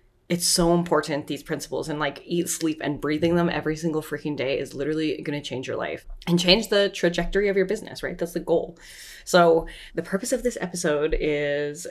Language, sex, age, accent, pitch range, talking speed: English, female, 20-39, American, 150-180 Hz, 200 wpm